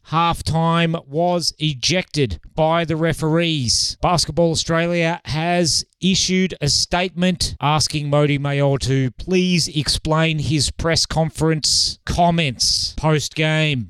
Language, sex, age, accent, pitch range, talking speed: English, male, 30-49, Australian, 125-155 Hz, 100 wpm